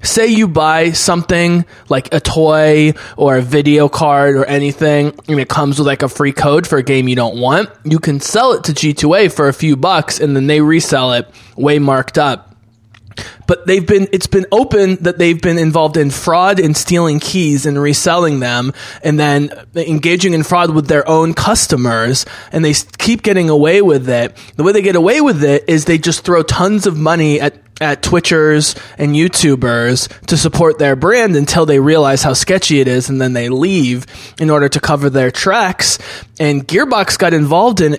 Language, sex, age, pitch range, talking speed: English, male, 20-39, 140-175 Hz, 195 wpm